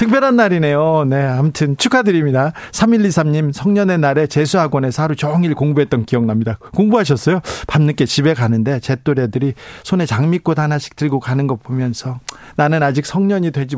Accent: native